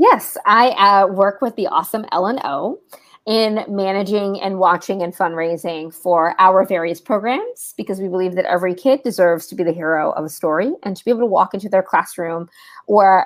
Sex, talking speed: female, 195 wpm